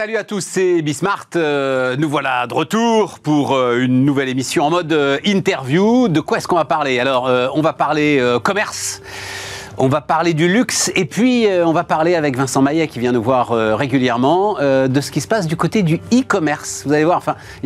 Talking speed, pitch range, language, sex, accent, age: 225 wpm, 115-160 Hz, French, male, French, 40-59